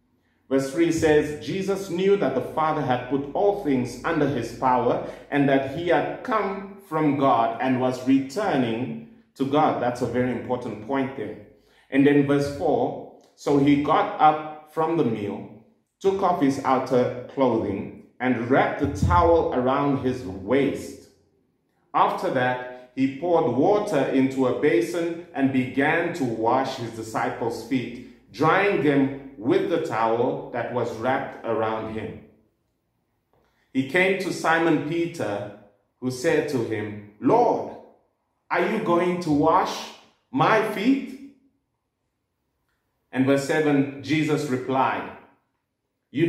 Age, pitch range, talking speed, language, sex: 30-49, 125-160 Hz, 135 wpm, English, male